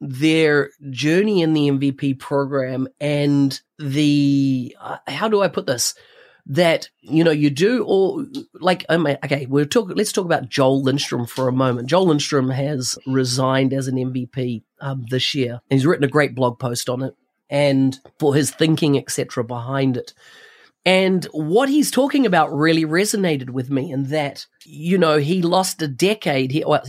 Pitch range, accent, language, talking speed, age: 135-165 Hz, Australian, English, 170 wpm, 30-49